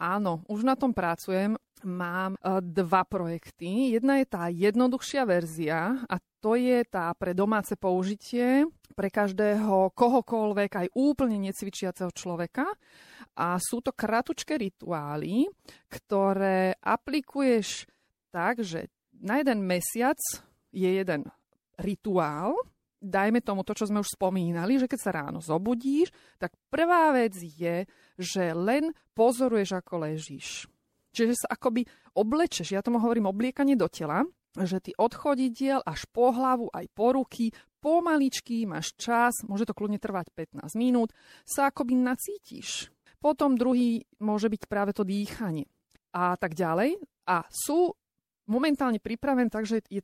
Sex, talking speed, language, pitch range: female, 130 wpm, Slovak, 185-255 Hz